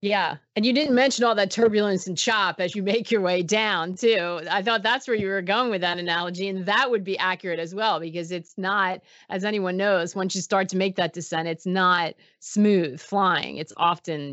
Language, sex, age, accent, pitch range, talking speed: English, female, 30-49, American, 175-220 Hz, 220 wpm